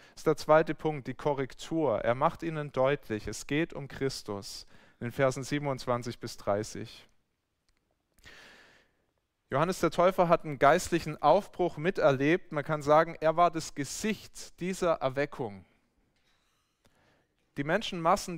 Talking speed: 125 wpm